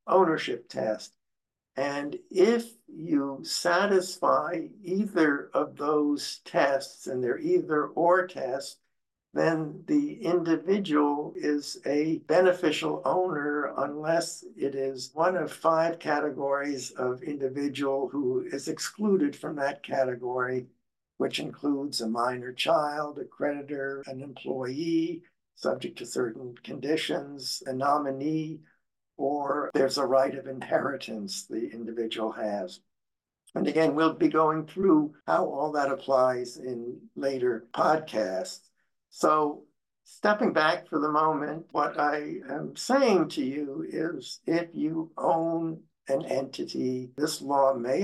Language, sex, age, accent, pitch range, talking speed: English, male, 60-79, American, 135-165 Hz, 120 wpm